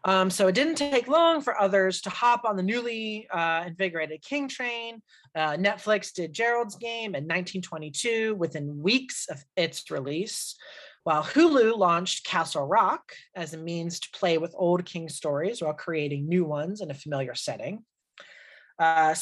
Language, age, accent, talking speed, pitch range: English, 30-49, American, 160 wpm, 160-220 Hz